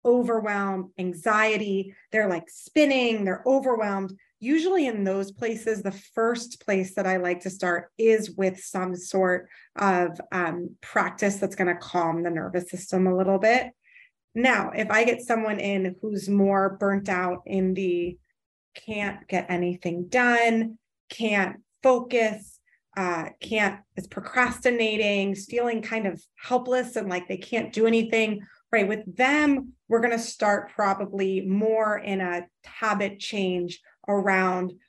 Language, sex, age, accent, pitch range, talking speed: English, female, 20-39, American, 185-230 Hz, 140 wpm